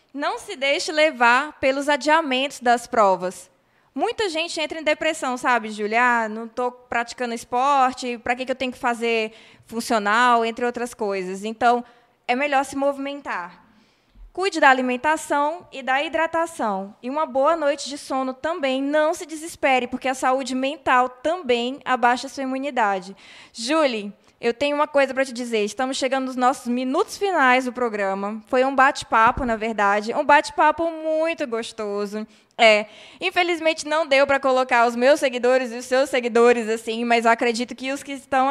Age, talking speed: 20-39, 160 wpm